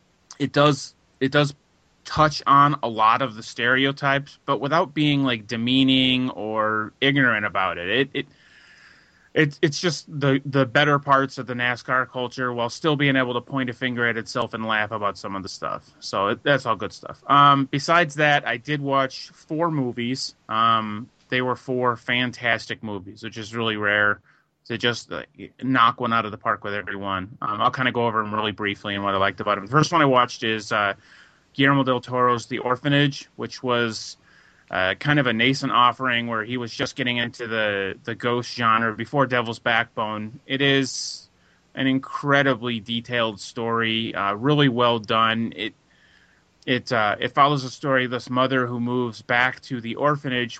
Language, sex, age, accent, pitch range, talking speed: English, male, 30-49, American, 115-135 Hz, 190 wpm